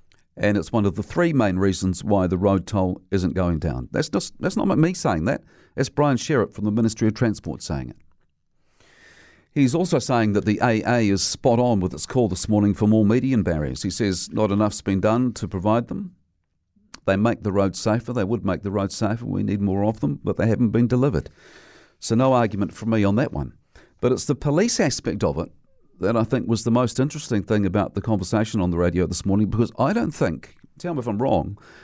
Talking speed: 225 wpm